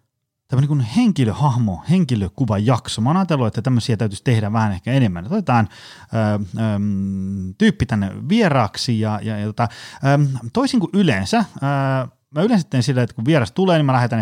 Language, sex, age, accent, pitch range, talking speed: Finnish, male, 30-49, native, 105-135 Hz, 160 wpm